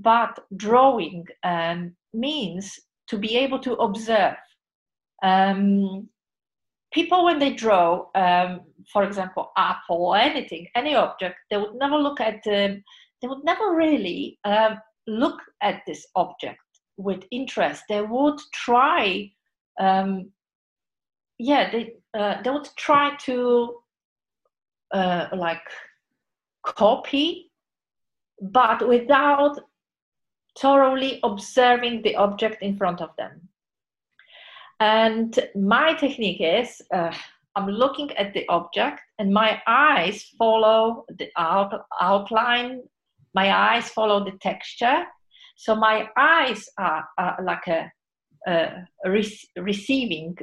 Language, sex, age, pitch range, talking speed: English, female, 40-59, 195-255 Hz, 110 wpm